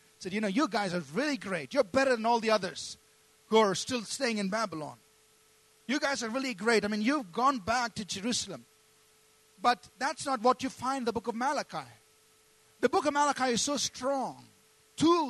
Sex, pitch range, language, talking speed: male, 215-265 Hz, English, 200 wpm